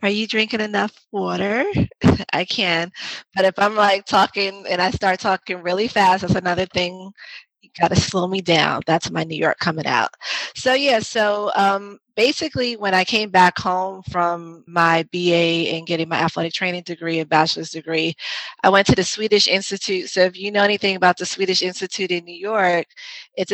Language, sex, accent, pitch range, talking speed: English, female, American, 165-195 Hz, 190 wpm